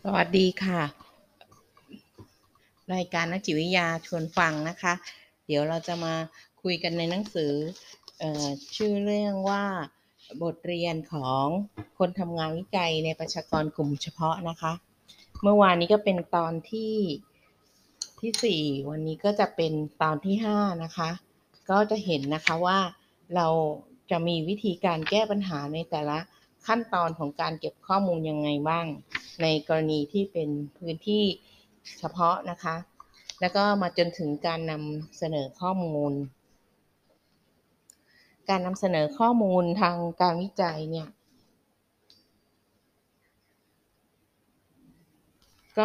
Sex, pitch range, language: female, 155-195 Hz, Thai